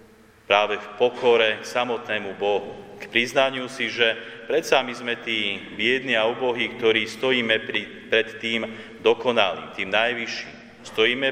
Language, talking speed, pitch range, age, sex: Slovak, 140 wpm, 100-120 Hz, 40-59, male